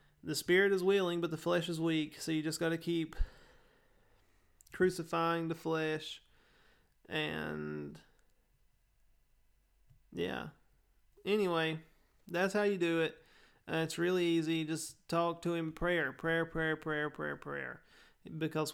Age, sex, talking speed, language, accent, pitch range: 30-49, male, 130 wpm, English, American, 150-165 Hz